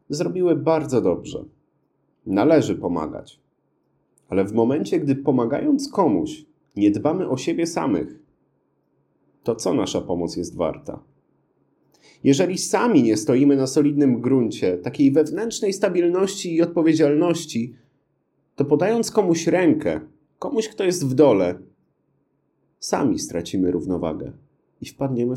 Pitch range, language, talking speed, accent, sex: 130-200 Hz, Polish, 115 wpm, native, male